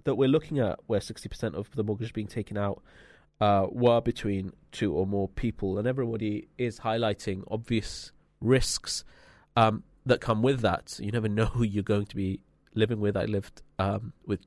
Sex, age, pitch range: male, 30-49, 105-140 Hz